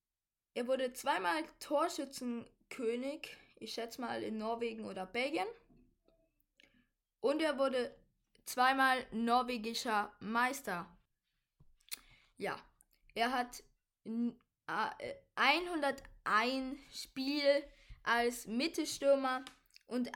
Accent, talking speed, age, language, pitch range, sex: German, 75 wpm, 20-39, German, 235-280 Hz, female